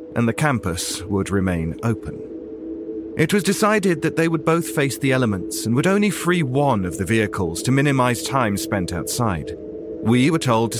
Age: 40-59